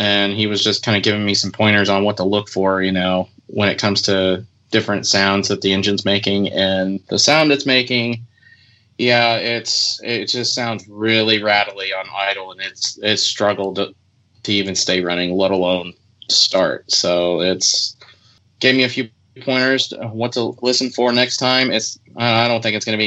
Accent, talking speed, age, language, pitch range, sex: American, 190 wpm, 20-39, English, 100-115 Hz, male